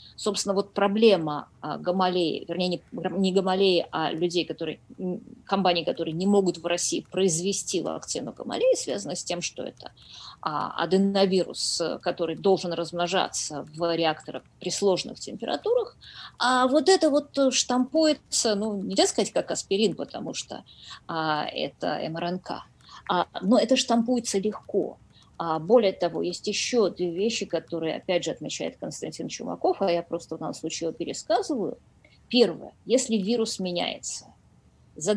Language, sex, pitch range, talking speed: Russian, female, 180-240 Hz, 130 wpm